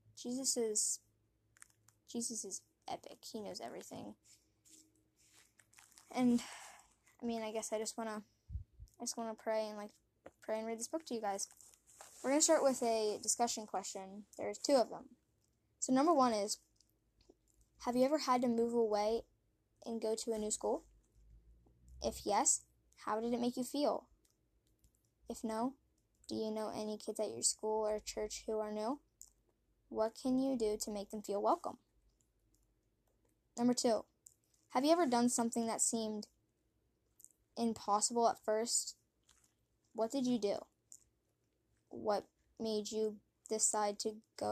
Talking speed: 155 wpm